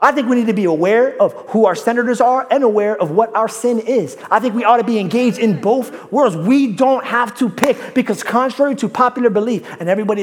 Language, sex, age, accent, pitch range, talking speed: English, male, 30-49, American, 195-280 Hz, 240 wpm